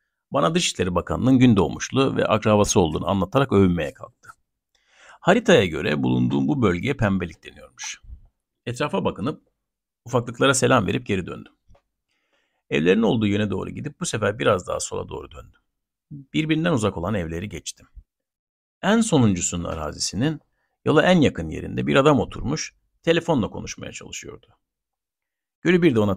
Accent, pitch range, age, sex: native, 85-135 Hz, 60-79, male